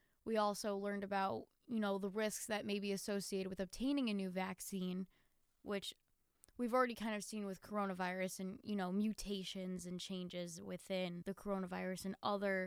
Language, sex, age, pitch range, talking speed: English, female, 20-39, 195-225 Hz, 170 wpm